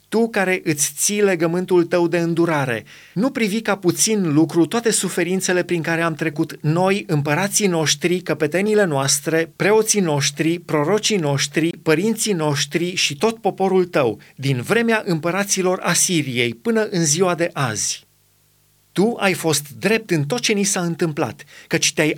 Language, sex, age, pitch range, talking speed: Romanian, male, 30-49, 145-195 Hz, 150 wpm